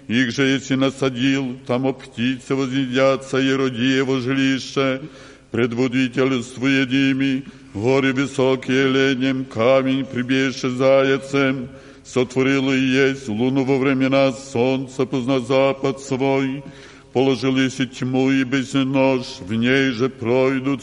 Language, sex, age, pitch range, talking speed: Polish, male, 60-79, 130-135 Hz, 110 wpm